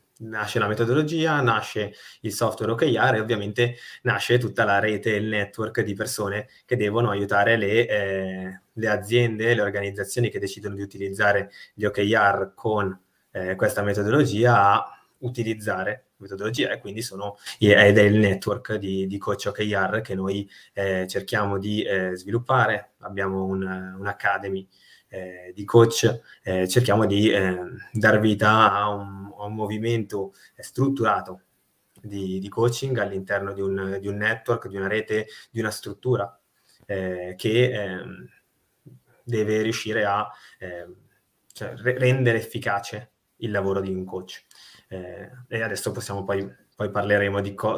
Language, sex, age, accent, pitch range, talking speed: Italian, male, 20-39, native, 100-115 Hz, 145 wpm